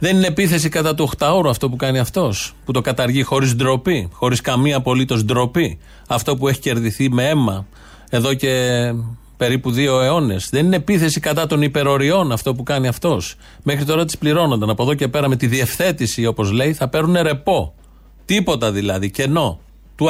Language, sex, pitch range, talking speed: Greek, male, 125-165 Hz, 180 wpm